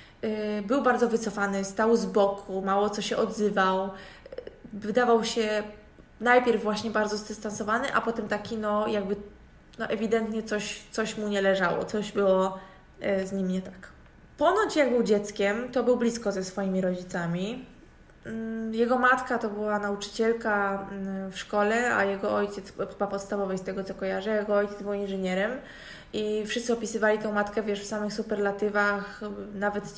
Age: 20-39